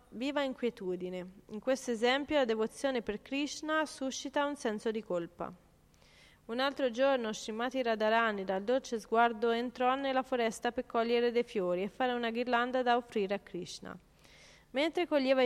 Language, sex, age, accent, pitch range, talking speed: Italian, female, 30-49, native, 215-265 Hz, 150 wpm